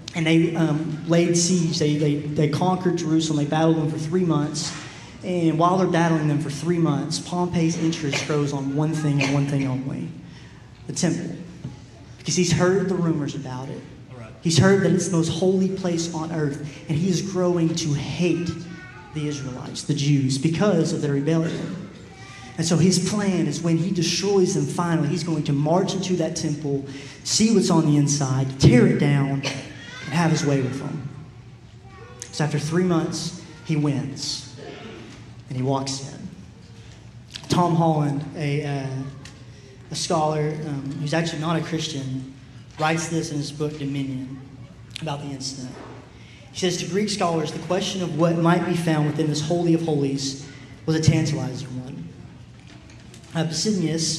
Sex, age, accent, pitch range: male, 30-49, American, 140-165 Hz